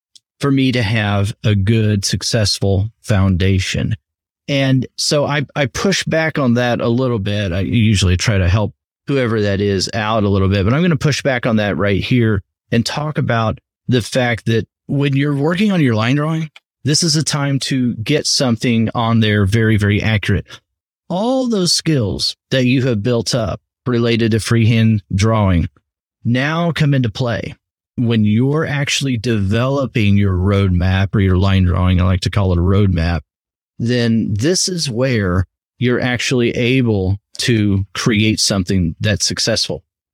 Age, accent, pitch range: 30-49, American, 100-130 Hz